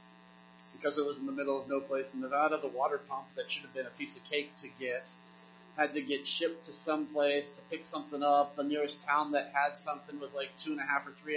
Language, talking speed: English, 260 wpm